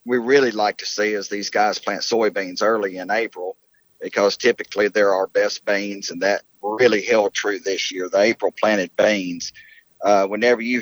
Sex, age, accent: male, 40-59, American